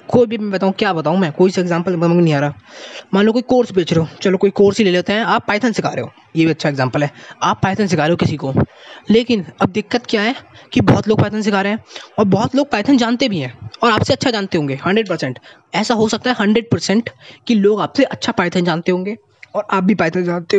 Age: 20-39